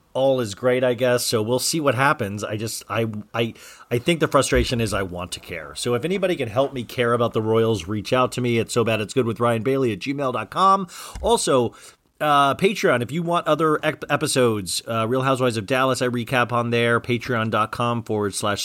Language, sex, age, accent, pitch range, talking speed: English, male, 40-59, American, 105-130 Hz, 220 wpm